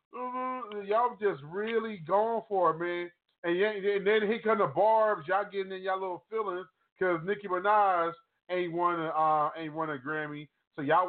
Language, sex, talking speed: English, male, 185 wpm